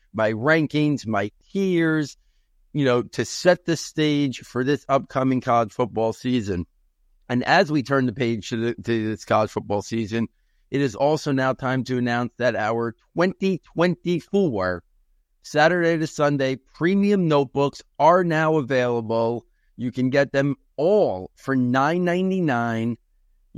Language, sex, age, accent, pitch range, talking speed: English, male, 50-69, American, 115-150 Hz, 135 wpm